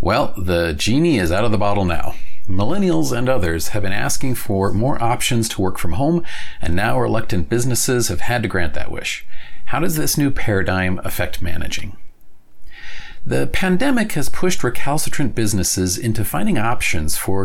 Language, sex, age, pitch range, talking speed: English, male, 40-59, 95-145 Hz, 170 wpm